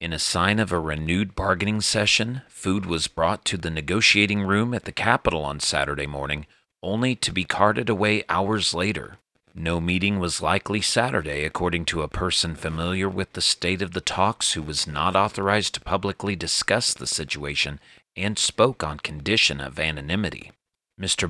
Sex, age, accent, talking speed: male, 40-59, American, 170 wpm